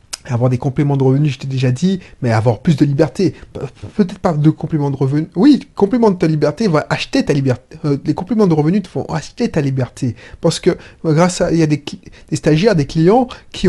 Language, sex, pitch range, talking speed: French, male, 150-215 Hz, 235 wpm